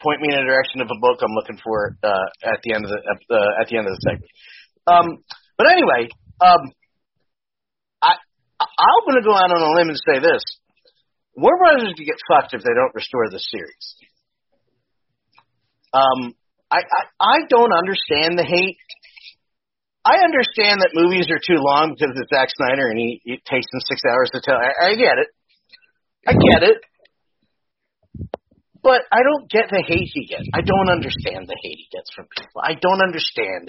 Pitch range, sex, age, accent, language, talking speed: 125-185 Hz, male, 40-59, American, English, 190 wpm